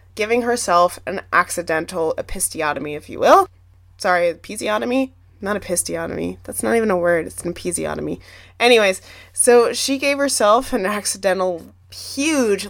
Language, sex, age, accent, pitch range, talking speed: English, female, 20-39, American, 165-230 Hz, 130 wpm